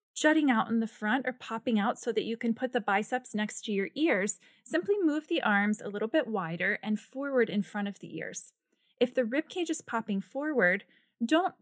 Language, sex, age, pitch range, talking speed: English, female, 20-39, 195-260 Hz, 215 wpm